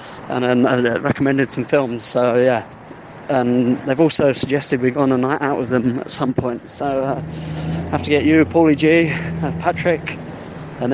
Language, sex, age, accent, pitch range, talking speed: English, male, 20-39, British, 120-150 Hz, 180 wpm